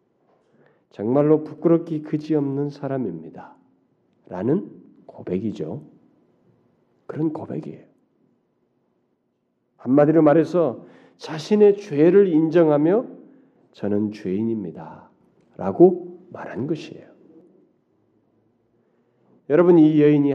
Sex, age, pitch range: male, 40-59, 115-165 Hz